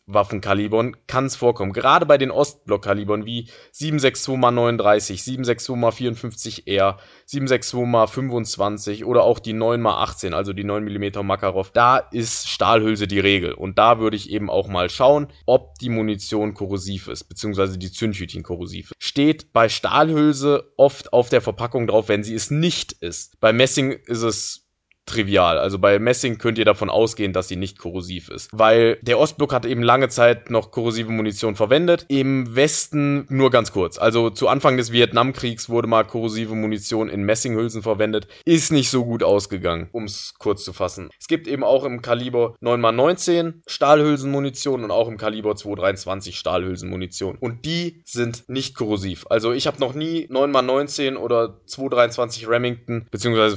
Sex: male